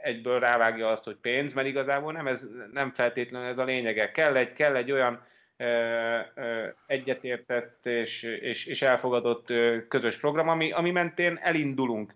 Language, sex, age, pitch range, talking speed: Hungarian, male, 30-49, 120-145 Hz, 140 wpm